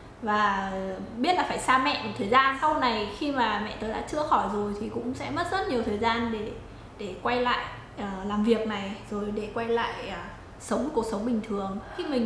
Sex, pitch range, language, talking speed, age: female, 210-275 Hz, Vietnamese, 220 wpm, 10-29